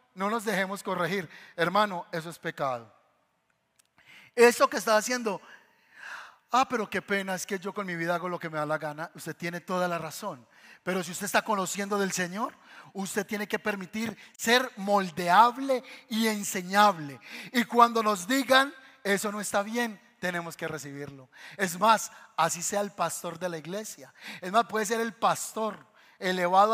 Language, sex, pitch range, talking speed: Spanish, male, 190-245 Hz, 170 wpm